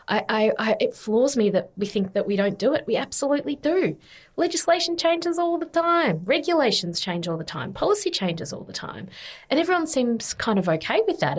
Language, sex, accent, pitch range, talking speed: English, female, Australian, 170-210 Hz, 195 wpm